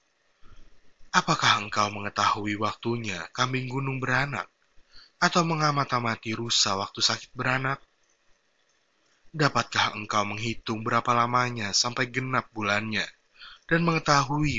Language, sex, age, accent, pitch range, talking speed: Indonesian, male, 20-39, native, 105-130 Hz, 95 wpm